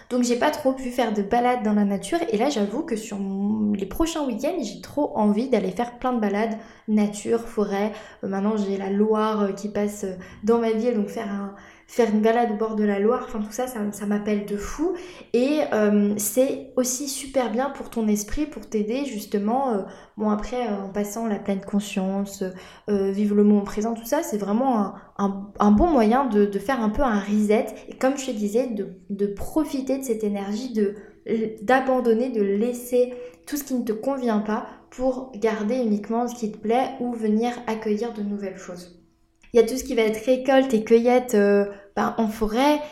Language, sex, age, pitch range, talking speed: French, female, 20-39, 205-245 Hz, 210 wpm